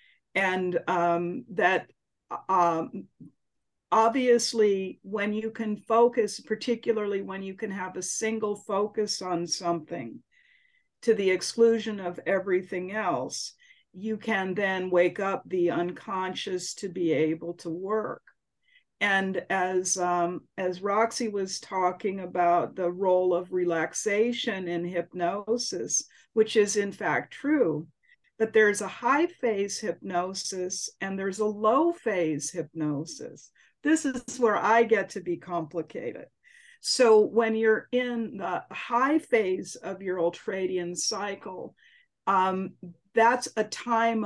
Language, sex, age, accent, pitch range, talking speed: English, female, 50-69, American, 180-225 Hz, 125 wpm